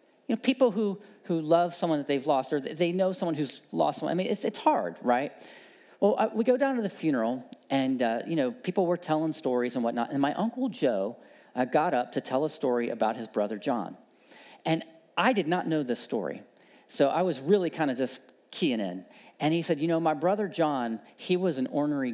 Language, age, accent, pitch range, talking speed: English, 40-59, American, 140-200 Hz, 230 wpm